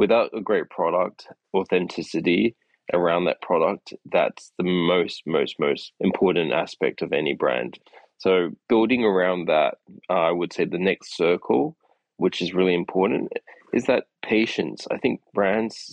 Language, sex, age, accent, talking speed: English, male, 20-39, Australian, 145 wpm